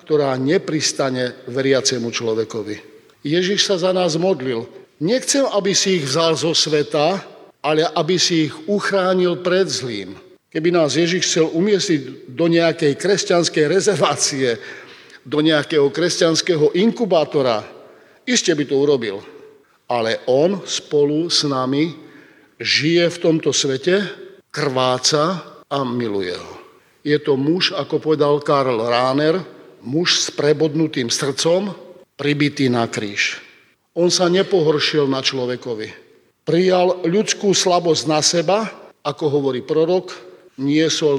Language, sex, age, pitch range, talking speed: Slovak, male, 50-69, 140-180 Hz, 120 wpm